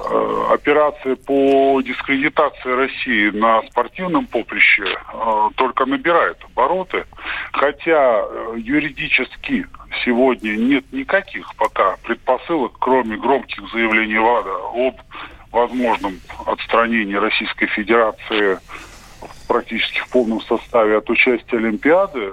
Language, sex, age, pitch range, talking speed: Russian, female, 20-39, 115-150 Hz, 95 wpm